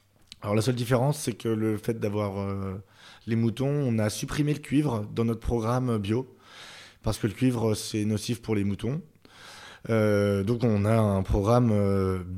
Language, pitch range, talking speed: French, 105-125 Hz, 175 wpm